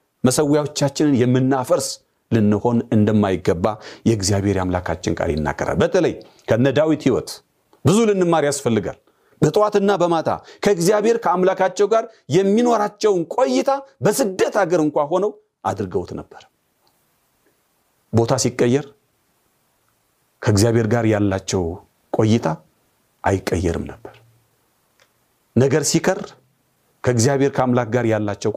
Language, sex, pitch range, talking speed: Amharic, male, 110-170 Hz, 90 wpm